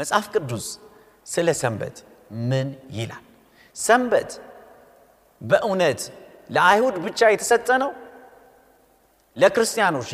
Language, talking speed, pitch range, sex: Amharic, 65 wpm, 140-230 Hz, male